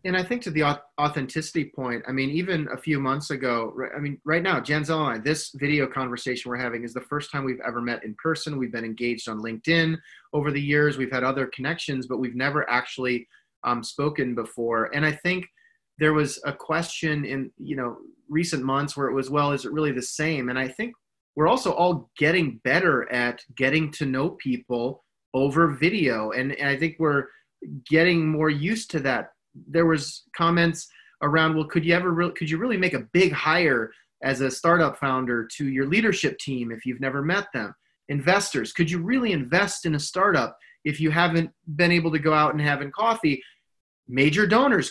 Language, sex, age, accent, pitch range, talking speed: English, male, 30-49, American, 135-175 Hz, 200 wpm